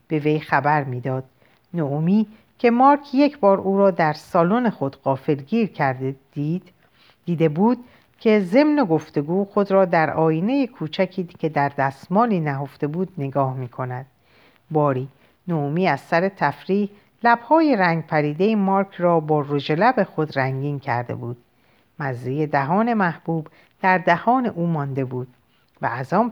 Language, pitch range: Persian, 145-195 Hz